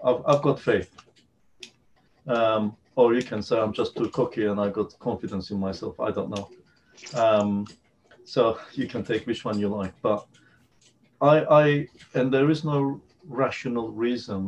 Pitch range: 100-125 Hz